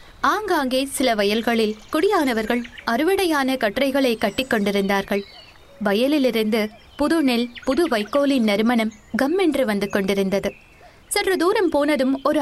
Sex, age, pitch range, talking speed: female, 20-39, 215-295 Hz, 95 wpm